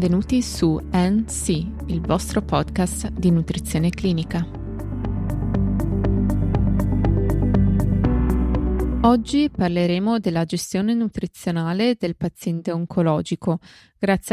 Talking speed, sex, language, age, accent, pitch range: 75 wpm, female, Italian, 20-39, native, 165-215 Hz